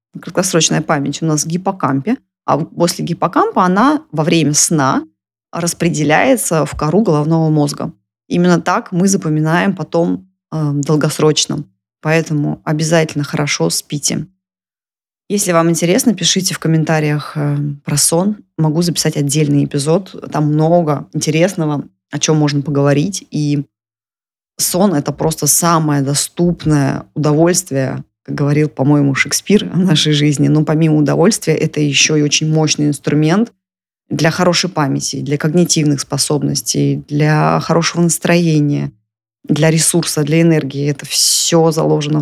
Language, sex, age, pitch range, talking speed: Russian, female, 20-39, 145-165 Hz, 125 wpm